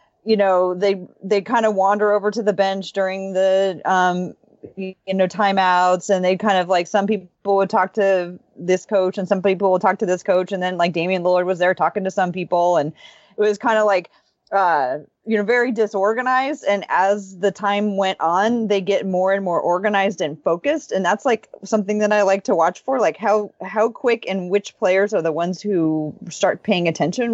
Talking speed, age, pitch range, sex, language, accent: 215 wpm, 30-49, 180-215 Hz, female, English, American